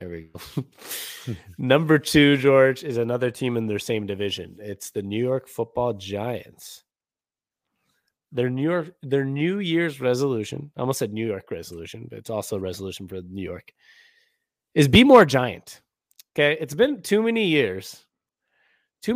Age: 20-39